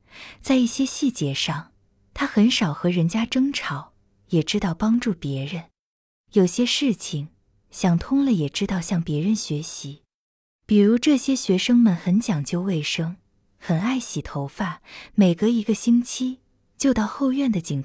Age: 20-39